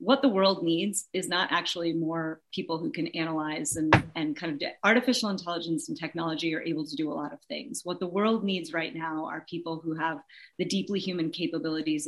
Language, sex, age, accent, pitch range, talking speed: English, female, 30-49, American, 165-220 Hz, 210 wpm